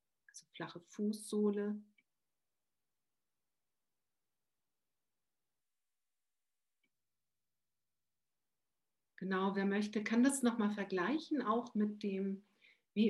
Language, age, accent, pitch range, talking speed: German, 60-79, German, 175-210 Hz, 65 wpm